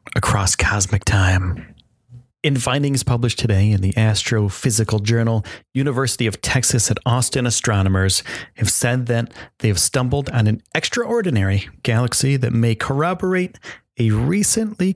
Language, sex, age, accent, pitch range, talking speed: English, male, 40-59, American, 105-130 Hz, 125 wpm